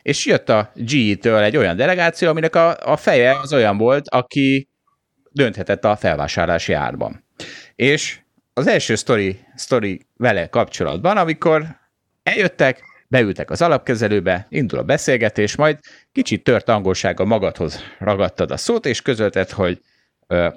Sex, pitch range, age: male, 95-140 Hz, 30-49